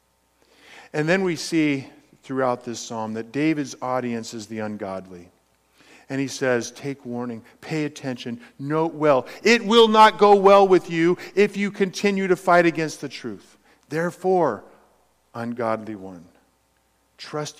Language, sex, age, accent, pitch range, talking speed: English, male, 50-69, American, 115-185 Hz, 140 wpm